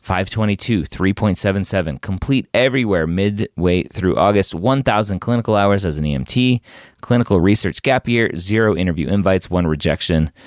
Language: English